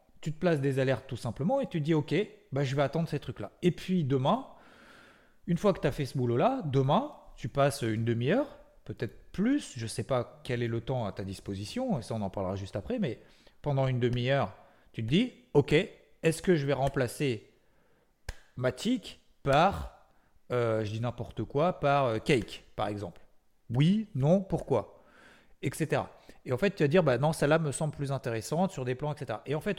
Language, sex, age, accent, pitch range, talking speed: French, male, 40-59, French, 120-175 Hz, 215 wpm